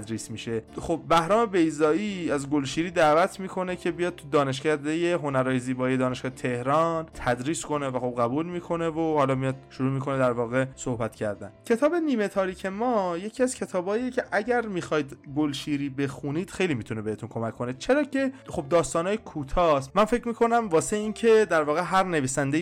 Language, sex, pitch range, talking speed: Persian, male, 120-165 Hz, 170 wpm